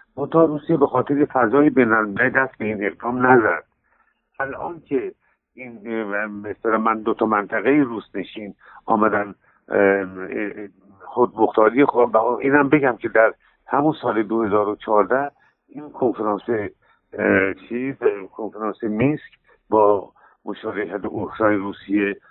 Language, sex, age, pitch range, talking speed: Persian, male, 60-79, 110-145 Hz, 110 wpm